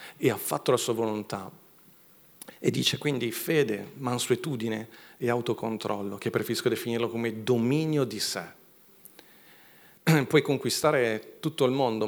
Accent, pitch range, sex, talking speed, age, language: native, 105-125 Hz, male, 125 wpm, 40-59, Italian